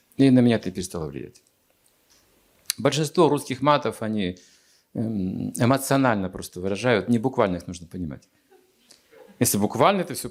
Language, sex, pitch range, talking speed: Russian, male, 95-145 Hz, 130 wpm